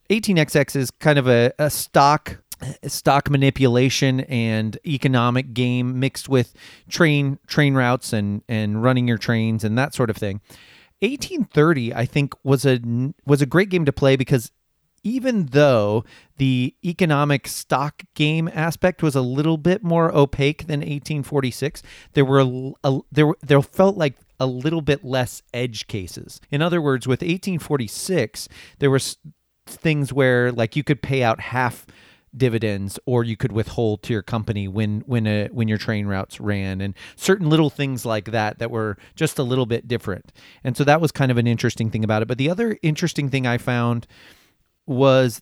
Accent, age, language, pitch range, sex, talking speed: American, 30-49, English, 115-150 Hz, male, 175 wpm